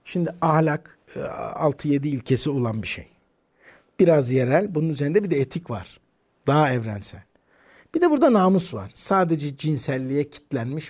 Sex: male